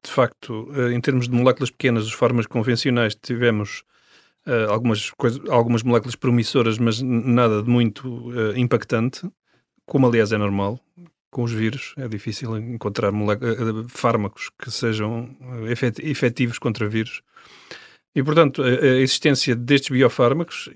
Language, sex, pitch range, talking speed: Portuguese, male, 110-130 Hz, 120 wpm